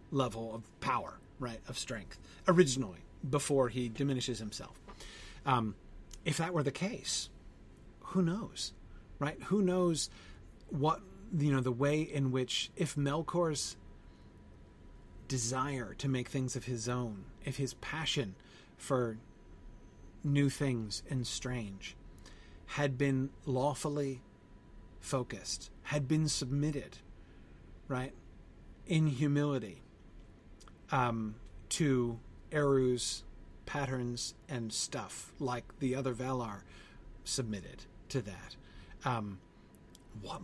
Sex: male